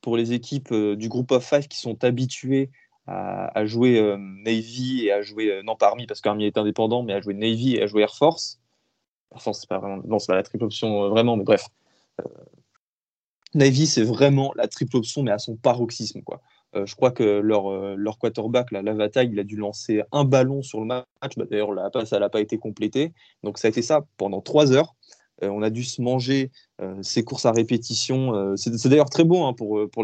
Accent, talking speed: French, 230 wpm